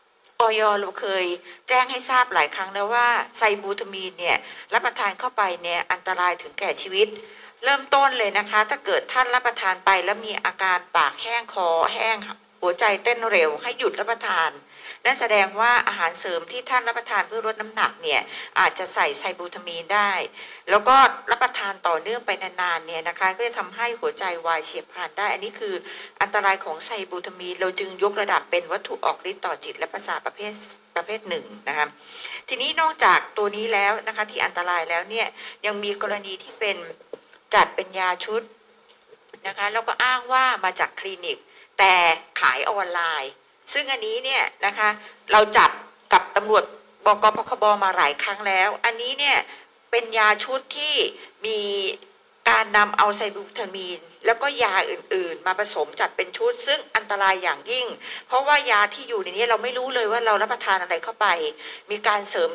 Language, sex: Thai, female